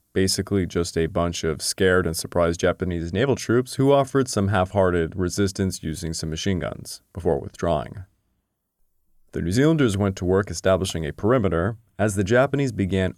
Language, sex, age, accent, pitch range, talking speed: English, male, 30-49, American, 90-110 Hz, 160 wpm